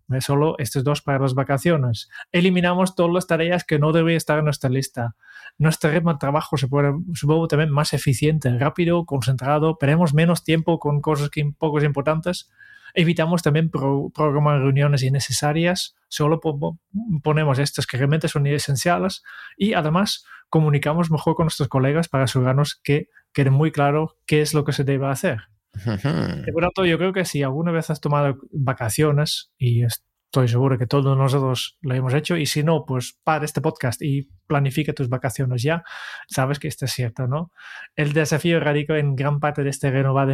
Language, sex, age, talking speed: Spanish, male, 20-39, 175 wpm